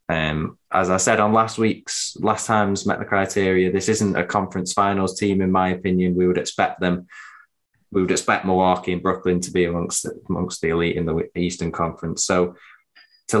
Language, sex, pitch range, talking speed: English, male, 85-95 Hz, 195 wpm